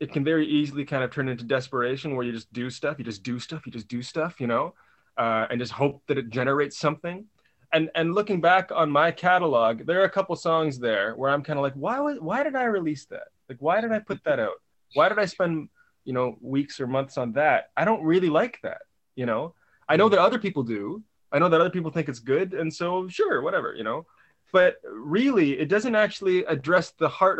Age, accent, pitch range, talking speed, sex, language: 20-39, American, 125-165 Hz, 240 wpm, male, English